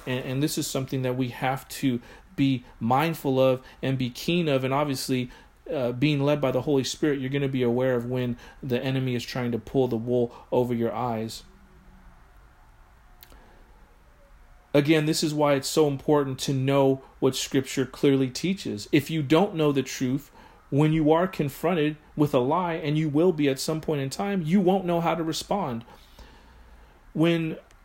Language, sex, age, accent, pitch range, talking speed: English, male, 40-59, American, 130-155 Hz, 180 wpm